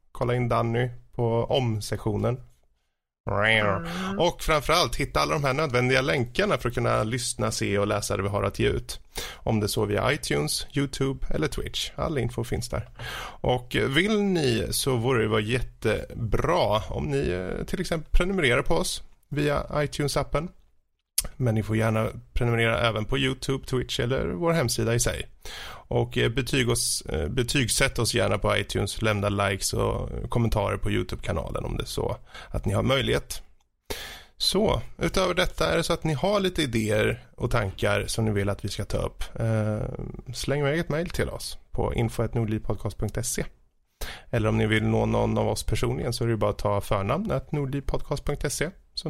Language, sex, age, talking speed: Swedish, male, 30-49, 170 wpm